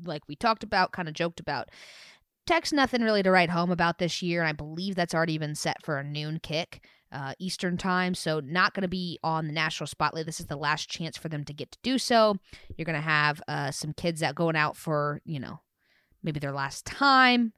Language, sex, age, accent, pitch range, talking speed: English, female, 20-39, American, 155-195 Hz, 235 wpm